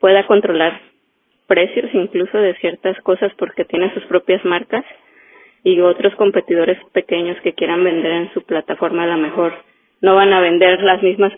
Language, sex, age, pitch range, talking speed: Spanish, female, 20-39, 180-205 Hz, 165 wpm